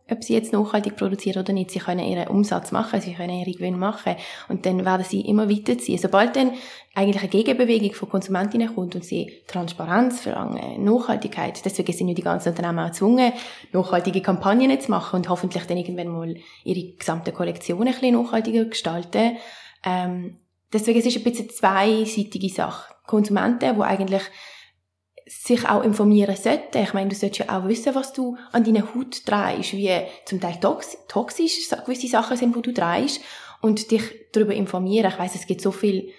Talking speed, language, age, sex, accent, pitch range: 180 wpm, German, 20-39, female, Austrian, 185-220 Hz